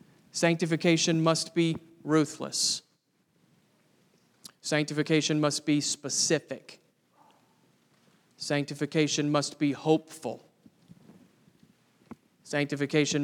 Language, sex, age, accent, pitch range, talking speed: English, male, 30-49, American, 145-170 Hz, 60 wpm